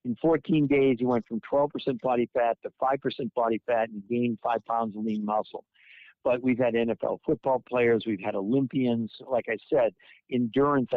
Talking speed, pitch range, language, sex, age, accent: 180 wpm, 110-130 Hz, English, male, 50-69, American